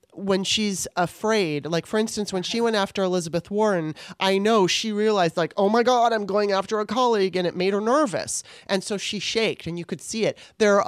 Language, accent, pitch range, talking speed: English, American, 175-220 Hz, 225 wpm